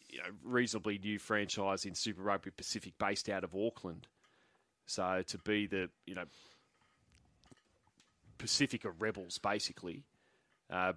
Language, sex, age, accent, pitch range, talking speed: English, male, 30-49, Australian, 95-125 Hz, 125 wpm